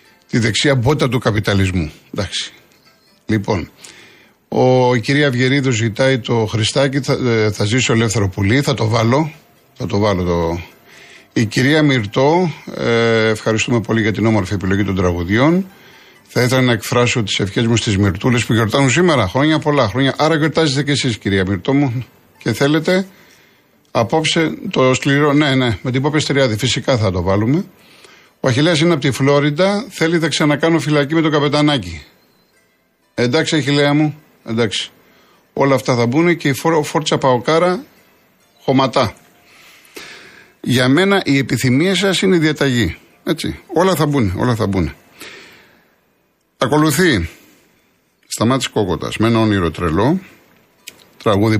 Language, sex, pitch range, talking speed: Greek, male, 105-150 Hz, 145 wpm